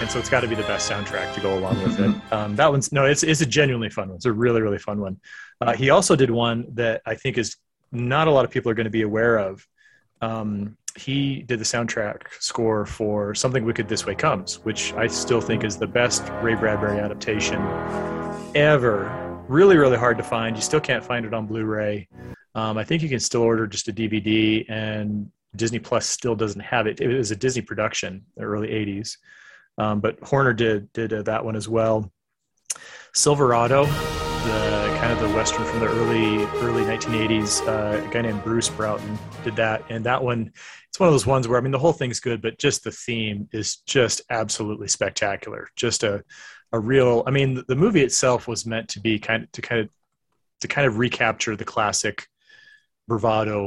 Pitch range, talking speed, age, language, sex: 105-120 Hz, 210 wpm, 30-49, English, male